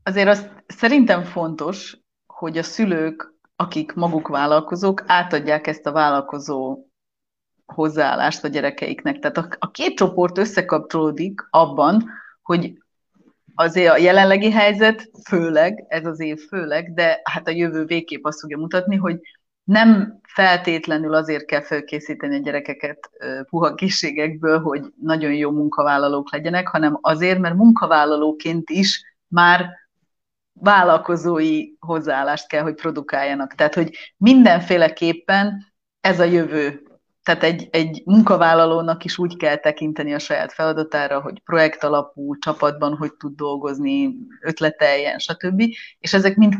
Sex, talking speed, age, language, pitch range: female, 125 wpm, 30-49, Hungarian, 155-190 Hz